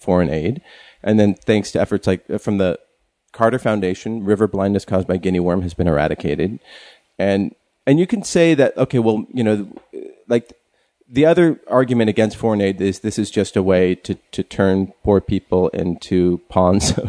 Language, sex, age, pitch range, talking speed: English, male, 40-59, 95-115 Hz, 180 wpm